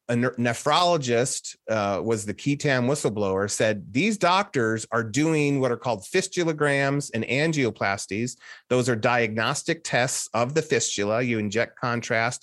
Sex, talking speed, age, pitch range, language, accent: male, 140 wpm, 30-49, 115-145 Hz, English, American